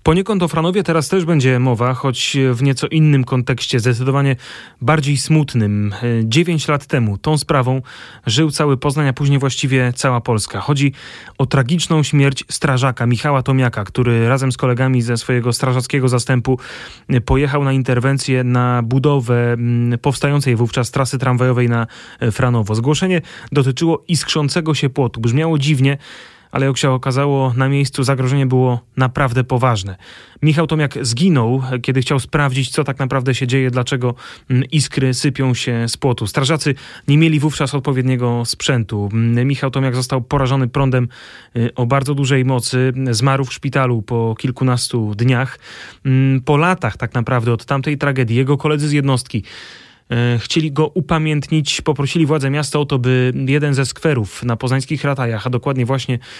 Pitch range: 120-145 Hz